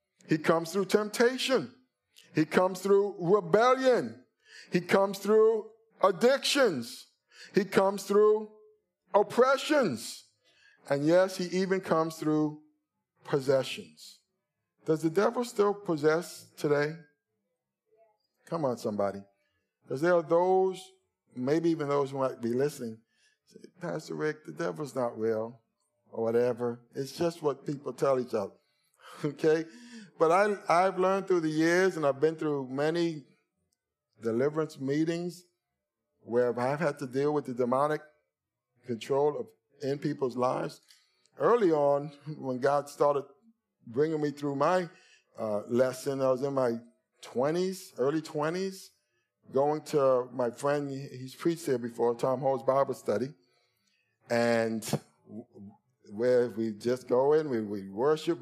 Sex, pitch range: male, 125-185 Hz